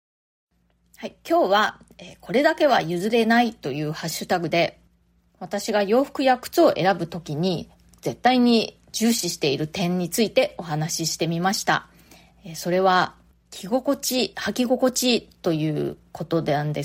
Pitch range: 175-245 Hz